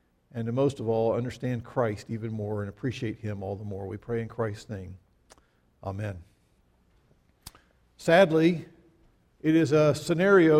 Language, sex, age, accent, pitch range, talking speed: English, male, 50-69, American, 115-165 Hz, 145 wpm